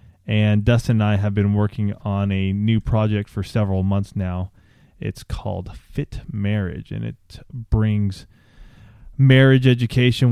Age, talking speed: 20-39, 140 wpm